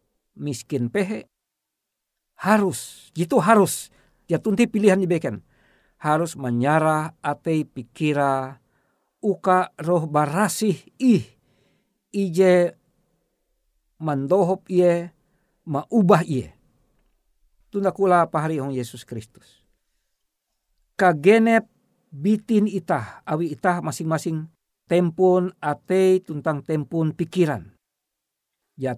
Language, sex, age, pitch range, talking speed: Indonesian, male, 50-69, 150-200 Hz, 80 wpm